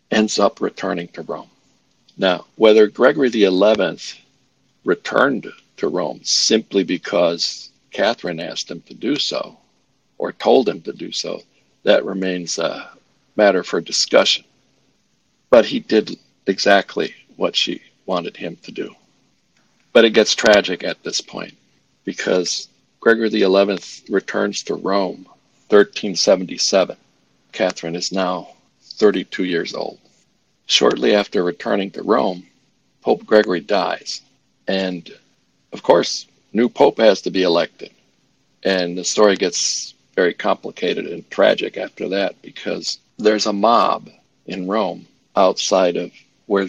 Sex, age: male, 60-79